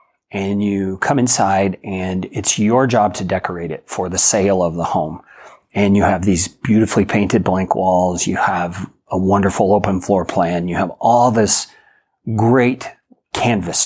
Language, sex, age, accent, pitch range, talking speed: English, male, 40-59, American, 95-115 Hz, 165 wpm